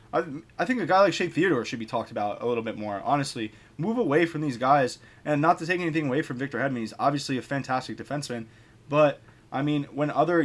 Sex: male